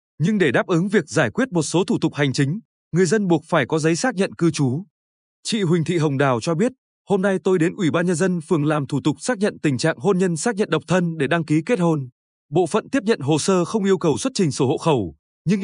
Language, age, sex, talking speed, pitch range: Vietnamese, 20-39, male, 275 wpm, 150-195 Hz